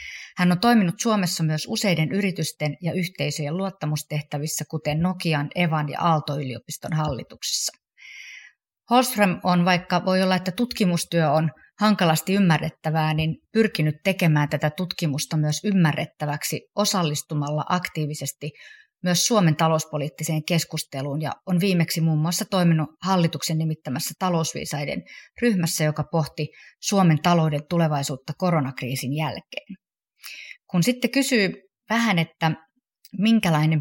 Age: 30-49